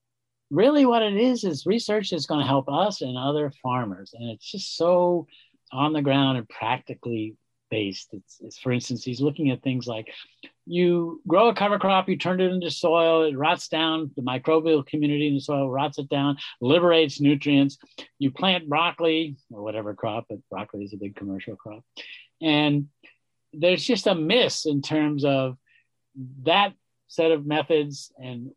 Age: 50-69